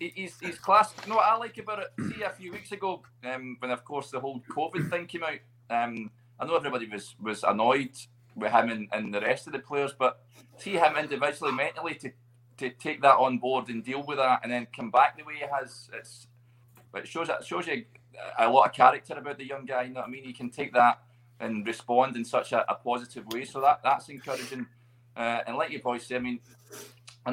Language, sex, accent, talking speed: English, male, British, 235 wpm